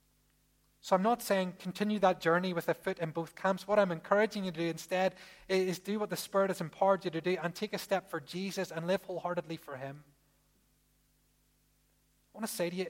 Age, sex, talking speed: 30-49, male, 220 wpm